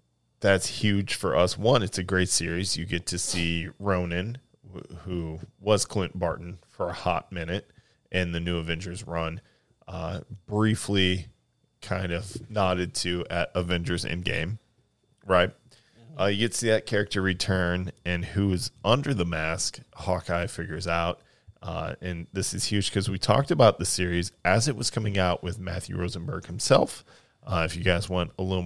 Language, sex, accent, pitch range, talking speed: English, male, American, 90-105 Hz, 170 wpm